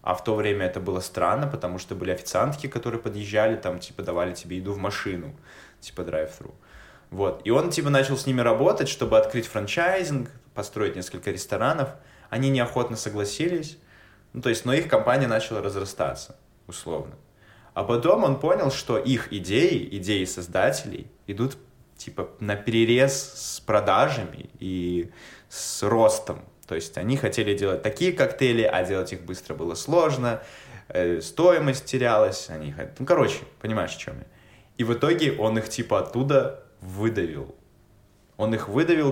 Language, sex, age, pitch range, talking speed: Russian, male, 20-39, 95-125 Hz, 155 wpm